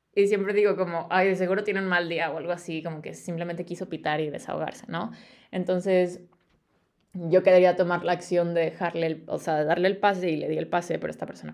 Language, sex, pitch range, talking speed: Spanish, female, 165-190 Hz, 230 wpm